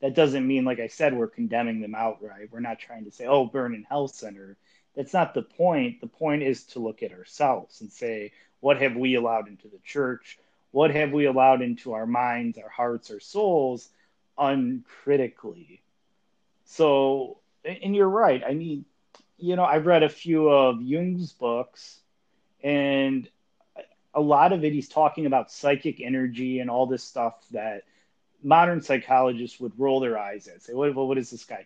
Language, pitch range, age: English, 120-165 Hz, 30-49